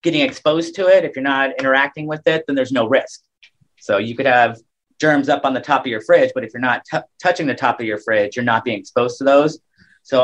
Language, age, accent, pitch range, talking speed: English, 30-49, American, 120-150 Hz, 250 wpm